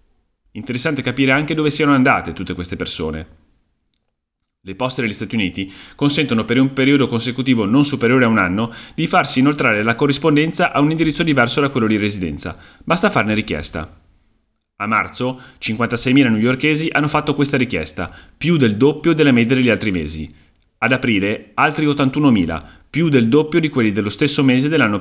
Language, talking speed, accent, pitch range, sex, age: Italian, 165 wpm, native, 95-140 Hz, male, 30-49